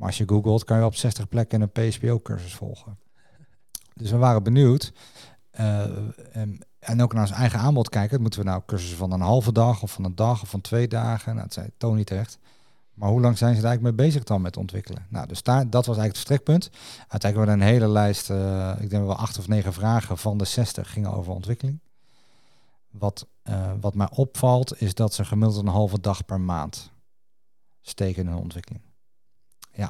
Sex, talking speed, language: male, 215 wpm, Dutch